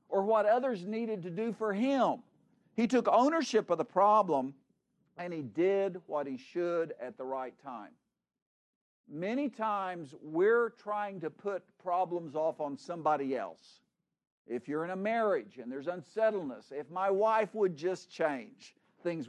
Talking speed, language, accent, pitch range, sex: 155 wpm, English, American, 170-230 Hz, male